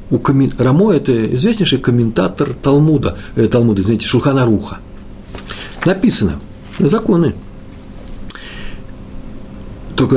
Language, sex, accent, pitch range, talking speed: Russian, male, native, 95-120 Hz, 85 wpm